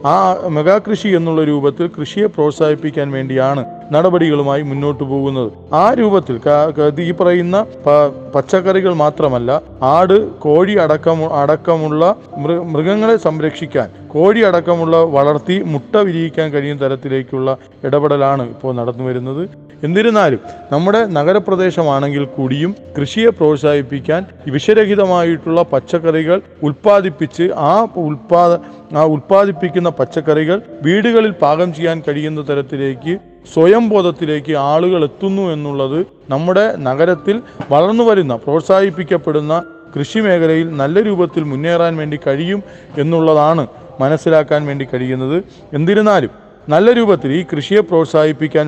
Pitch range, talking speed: 145-180 Hz, 95 wpm